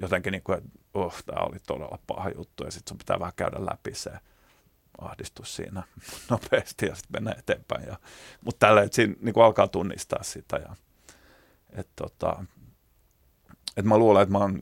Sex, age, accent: male, 30-49, native